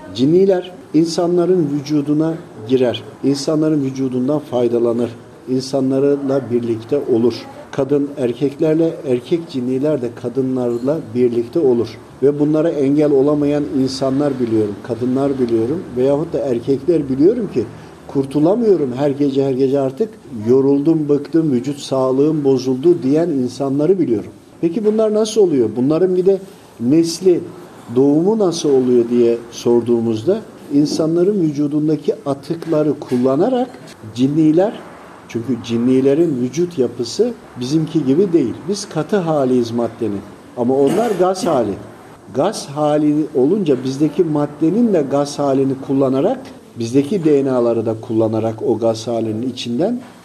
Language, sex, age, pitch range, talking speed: Turkish, male, 50-69, 125-160 Hz, 115 wpm